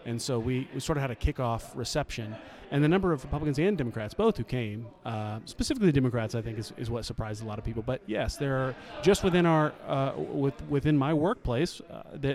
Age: 30-49